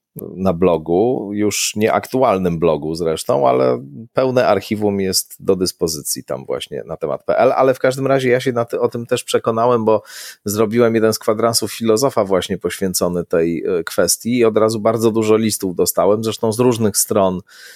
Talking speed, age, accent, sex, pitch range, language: 170 wpm, 30-49, native, male, 95-115 Hz, Polish